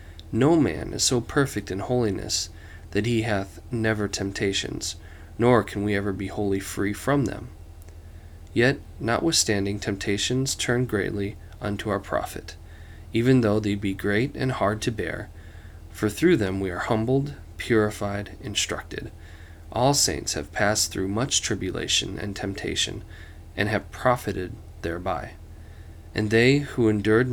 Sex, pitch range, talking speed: male, 85-110 Hz, 140 wpm